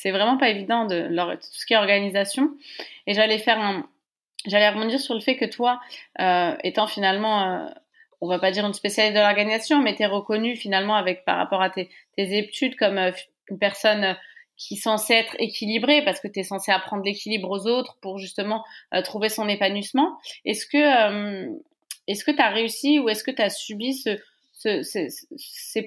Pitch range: 195-240 Hz